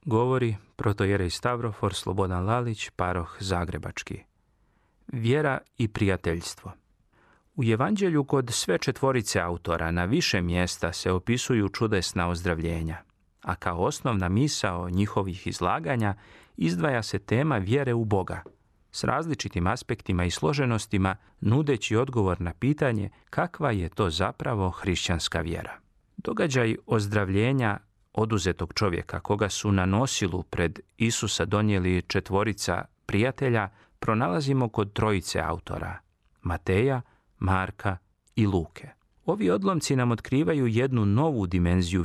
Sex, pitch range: male, 90-120 Hz